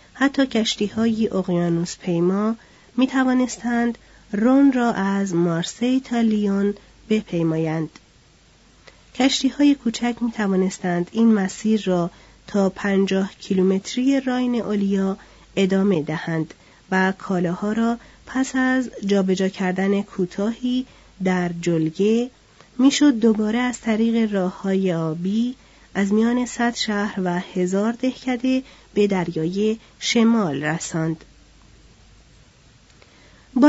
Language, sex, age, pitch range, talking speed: Persian, female, 30-49, 185-240 Hz, 95 wpm